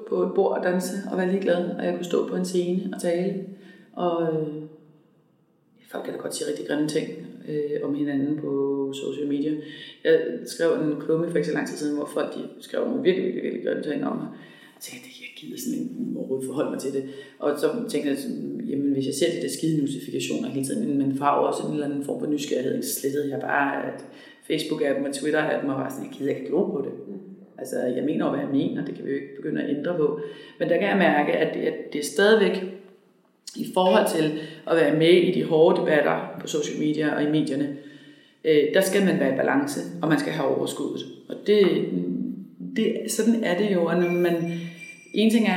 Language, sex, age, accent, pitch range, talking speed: Danish, female, 30-49, native, 150-195 Hz, 235 wpm